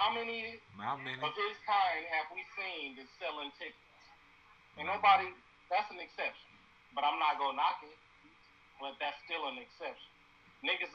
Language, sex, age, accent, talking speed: English, male, 40-59, American, 160 wpm